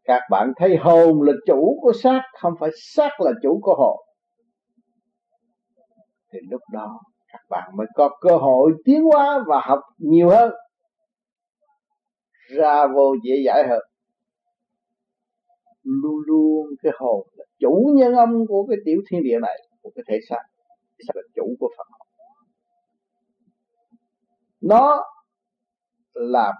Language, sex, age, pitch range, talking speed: Vietnamese, male, 60-79, 165-240 Hz, 140 wpm